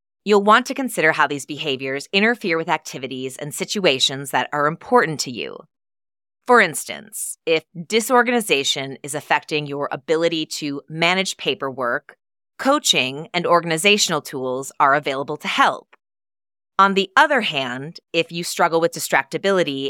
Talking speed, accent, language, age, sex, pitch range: 135 wpm, American, English, 30-49, female, 145-200 Hz